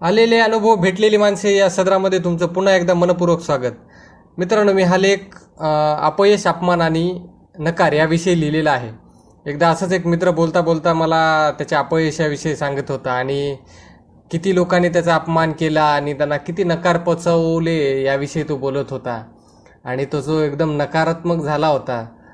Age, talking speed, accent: 20-39, 150 wpm, native